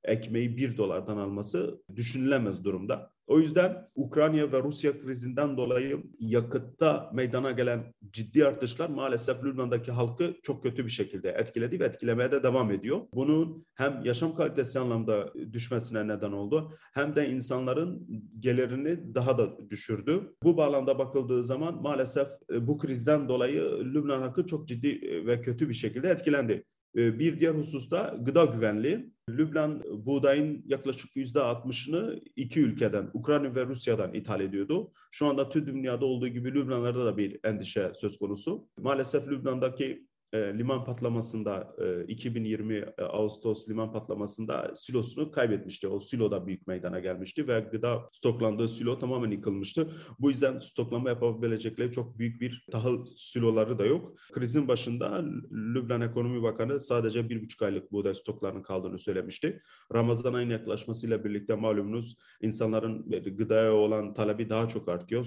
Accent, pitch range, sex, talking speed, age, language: native, 110-140 Hz, male, 140 wpm, 40-59, Turkish